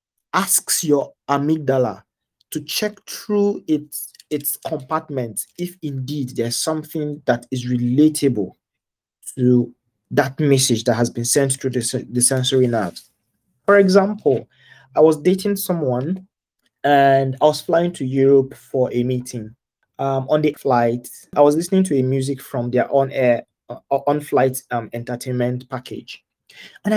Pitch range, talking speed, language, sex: 125-155 Hz, 135 wpm, English, male